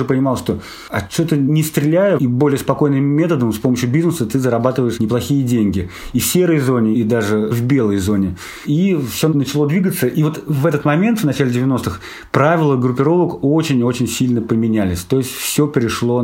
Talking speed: 175 wpm